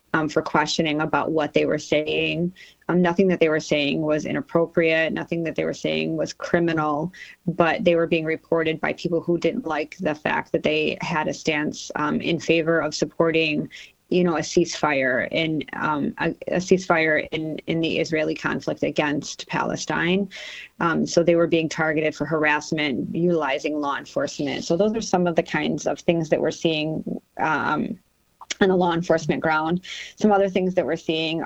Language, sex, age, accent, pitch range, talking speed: English, female, 30-49, American, 155-170 Hz, 185 wpm